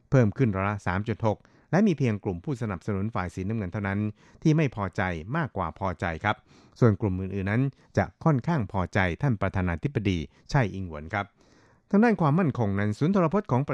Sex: male